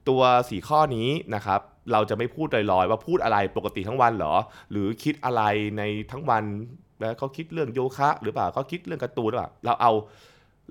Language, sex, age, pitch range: Thai, male, 20-39, 95-130 Hz